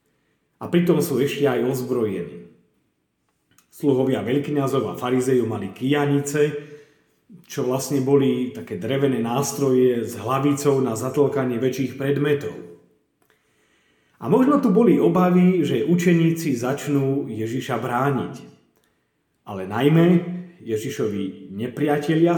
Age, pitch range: 40-59, 125-165 Hz